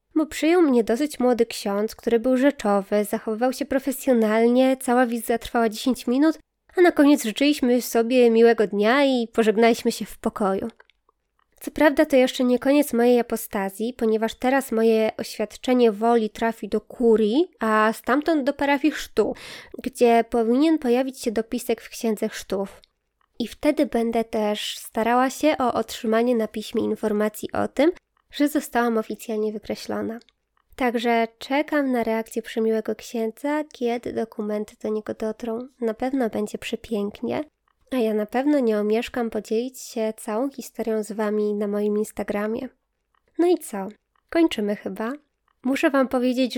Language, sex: Polish, female